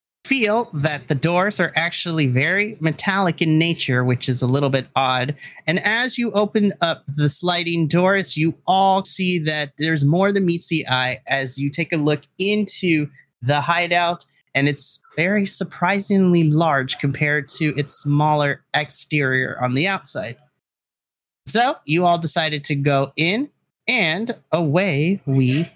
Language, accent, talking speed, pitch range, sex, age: English, American, 150 wpm, 140-195 Hz, male, 30-49